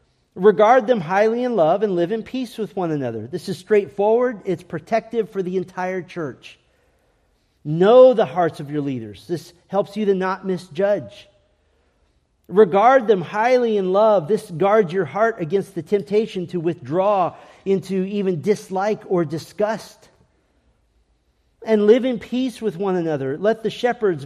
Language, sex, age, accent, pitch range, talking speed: English, male, 40-59, American, 155-210 Hz, 155 wpm